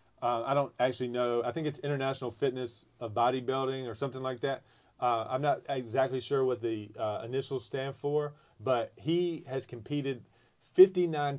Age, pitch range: 30-49, 115-140 Hz